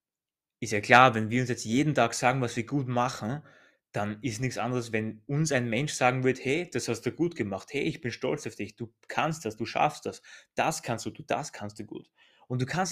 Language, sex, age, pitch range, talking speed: German, male, 20-39, 115-145 Hz, 245 wpm